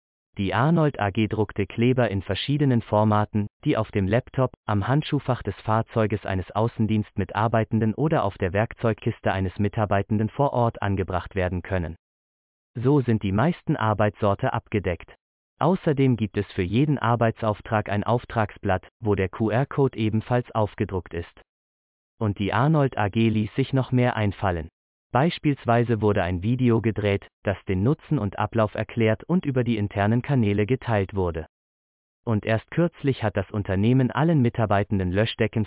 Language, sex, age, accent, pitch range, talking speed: German, male, 30-49, German, 100-125 Hz, 145 wpm